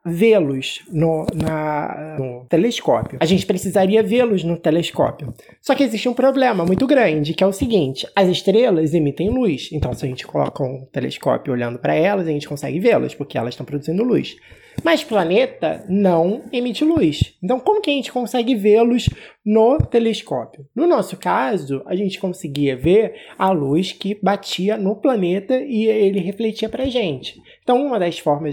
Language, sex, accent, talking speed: Portuguese, male, Brazilian, 175 wpm